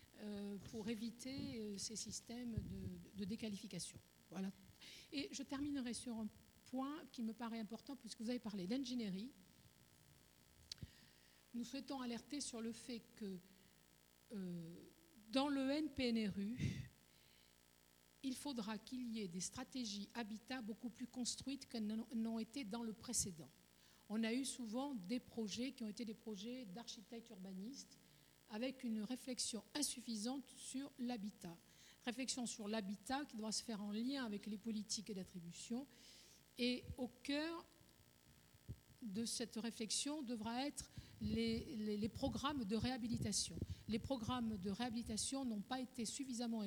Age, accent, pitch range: 50-69, French, 205-255 Hz